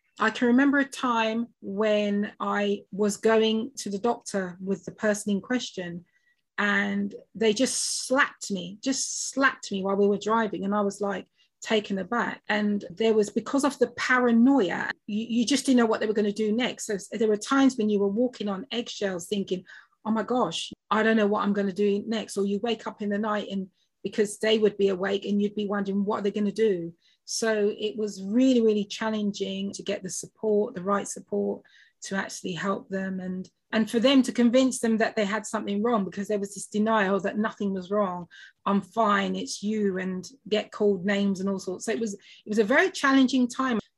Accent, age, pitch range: British, 30-49, 200-230 Hz